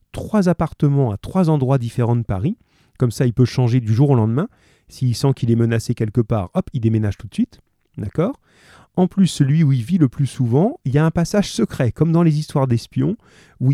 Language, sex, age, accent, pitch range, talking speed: French, male, 30-49, French, 115-160 Hz, 225 wpm